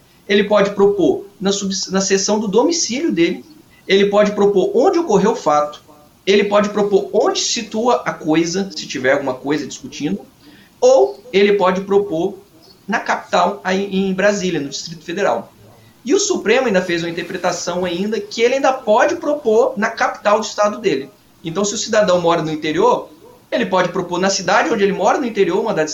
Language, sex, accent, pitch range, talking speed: Portuguese, male, Brazilian, 155-220 Hz, 185 wpm